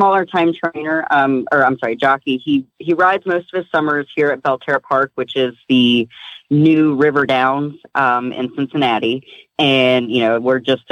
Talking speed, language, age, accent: 180 wpm, English, 30-49, American